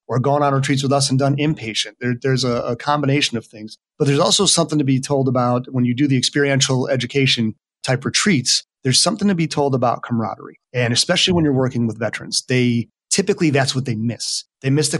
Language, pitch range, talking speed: English, 120-140 Hz, 220 wpm